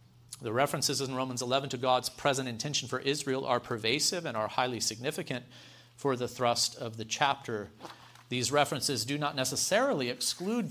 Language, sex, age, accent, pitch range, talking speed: English, male, 40-59, American, 120-170 Hz, 160 wpm